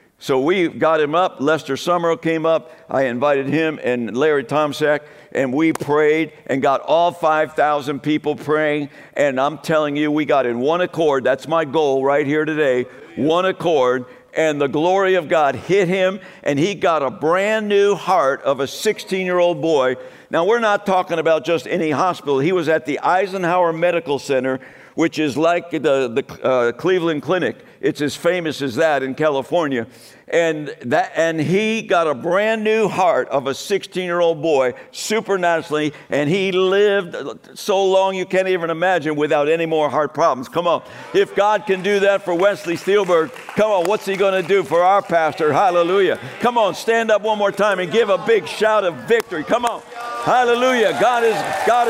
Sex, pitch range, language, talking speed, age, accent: male, 150-205 Hz, English, 185 wpm, 60-79, American